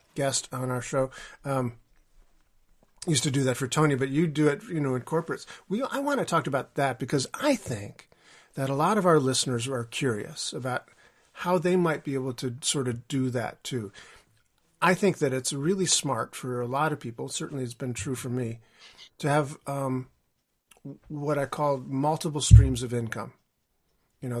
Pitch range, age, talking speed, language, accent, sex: 125-155 Hz, 50-69, 190 wpm, English, American, male